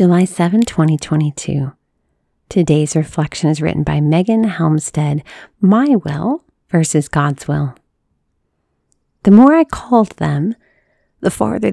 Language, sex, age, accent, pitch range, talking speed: English, female, 40-59, American, 155-220 Hz, 115 wpm